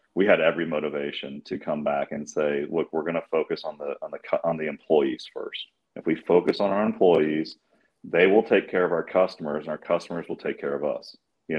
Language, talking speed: English, 230 wpm